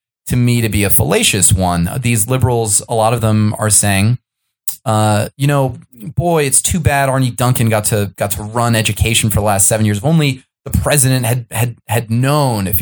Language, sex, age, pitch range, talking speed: English, male, 20-39, 100-125 Hz, 205 wpm